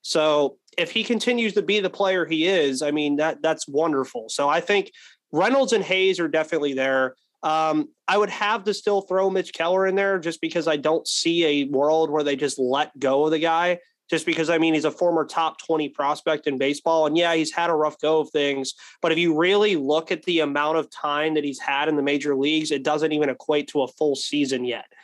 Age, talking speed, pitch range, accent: 20-39, 230 wpm, 150-175 Hz, American